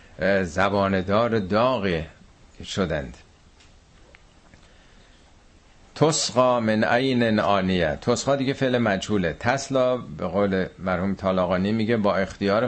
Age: 50-69